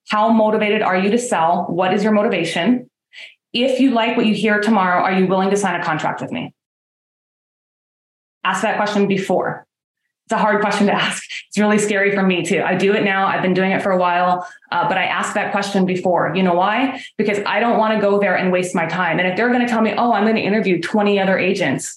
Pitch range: 195-250 Hz